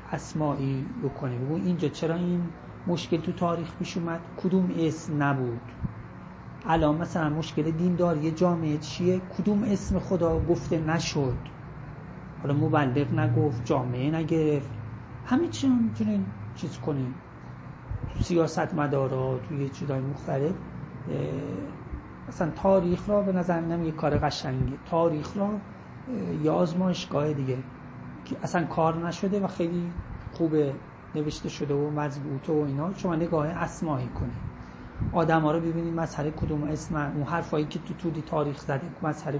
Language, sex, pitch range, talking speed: Persian, male, 140-170 Hz, 130 wpm